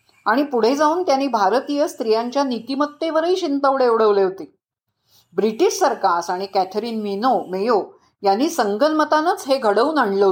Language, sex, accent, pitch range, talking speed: Marathi, female, native, 200-280 Hz, 120 wpm